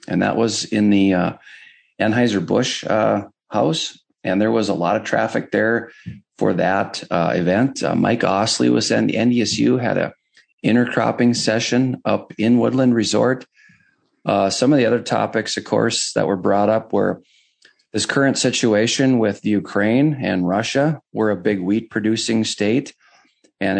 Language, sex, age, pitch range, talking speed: English, male, 40-59, 100-125 Hz, 160 wpm